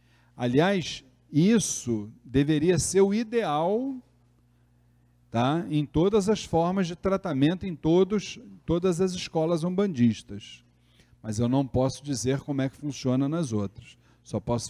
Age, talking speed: 40-59, 135 wpm